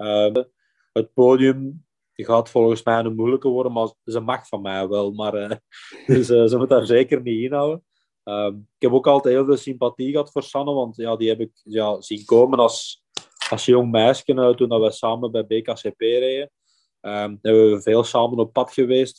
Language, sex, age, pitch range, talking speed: Dutch, male, 20-39, 110-125 Hz, 200 wpm